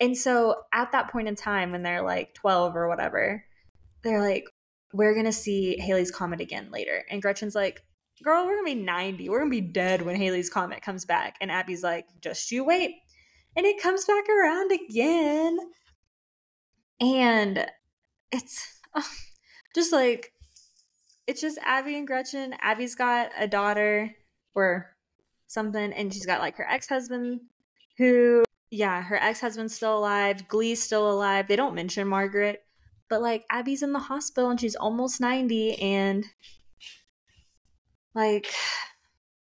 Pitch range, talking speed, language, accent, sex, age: 195-255 Hz, 150 wpm, English, American, female, 20-39